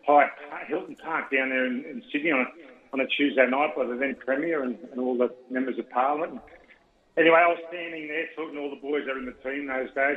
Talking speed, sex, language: 260 wpm, male, English